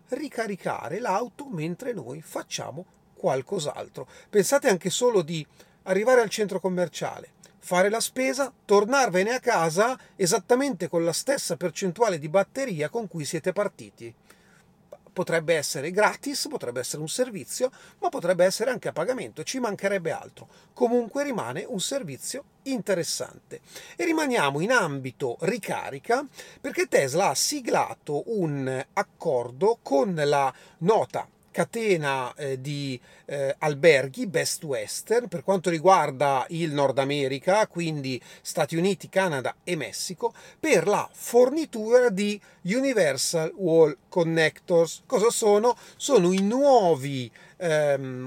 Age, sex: 40-59, male